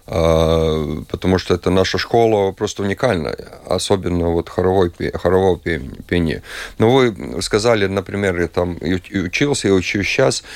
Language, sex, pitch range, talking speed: Russian, male, 90-115 Hz, 130 wpm